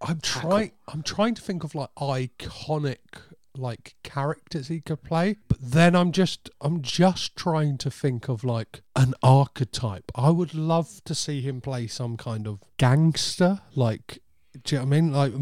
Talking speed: 180 wpm